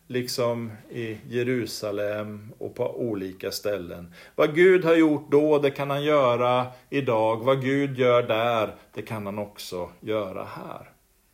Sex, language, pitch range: male, Swedish, 110-155 Hz